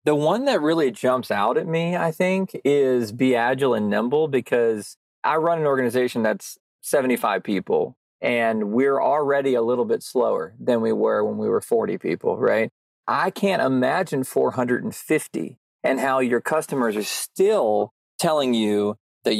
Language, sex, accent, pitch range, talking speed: English, male, American, 120-165 Hz, 160 wpm